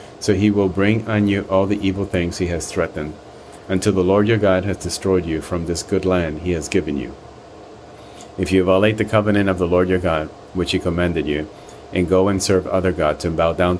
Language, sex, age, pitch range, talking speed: English, male, 40-59, 85-100 Hz, 225 wpm